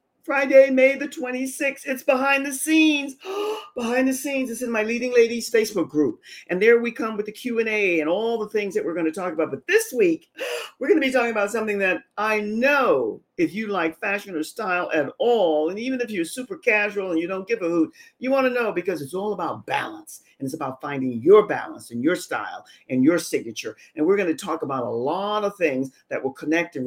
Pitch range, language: 160-260 Hz, English